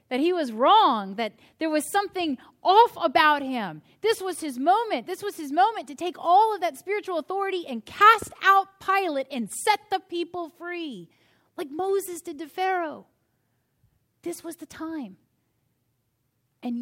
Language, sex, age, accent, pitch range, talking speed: English, female, 30-49, American, 185-280 Hz, 160 wpm